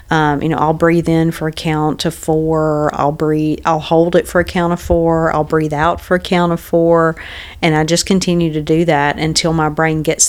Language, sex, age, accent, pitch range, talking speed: English, female, 40-59, American, 155-180 Hz, 235 wpm